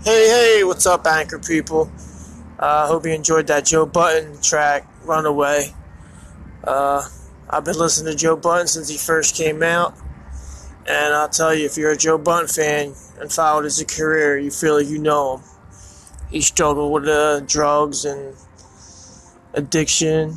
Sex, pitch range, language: male, 130-160 Hz, English